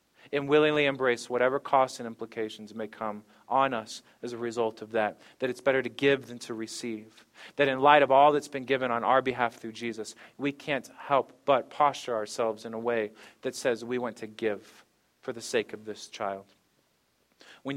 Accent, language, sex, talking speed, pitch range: American, English, male, 200 wpm, 120-145 Hz